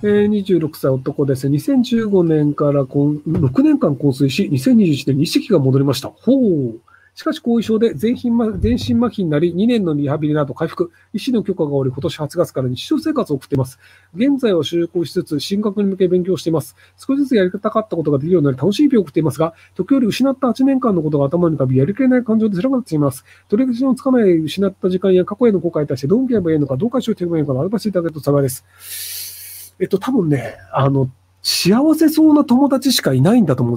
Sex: male